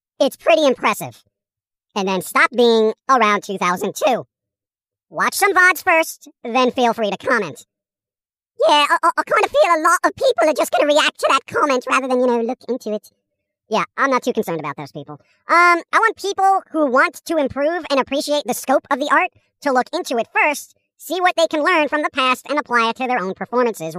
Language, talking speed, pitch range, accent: English, 215 wpm, 230-340 Hz, American